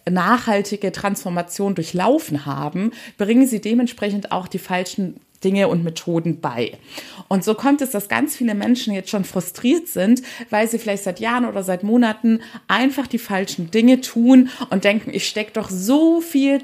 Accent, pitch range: German, 185-225 Hz